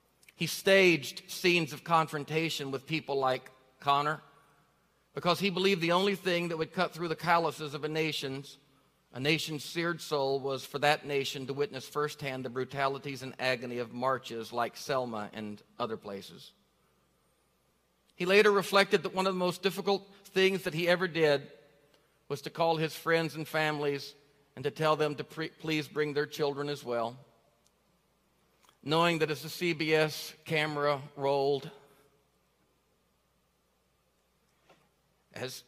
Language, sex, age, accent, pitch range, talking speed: English, male, 50-69, American, 135-175 Hz, 145 wpm